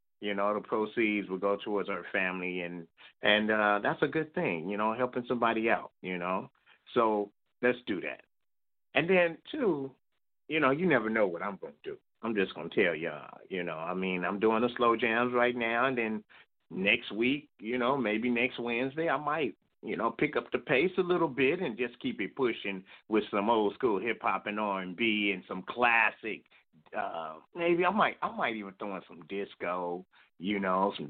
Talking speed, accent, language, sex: 205 wpm, American, English, male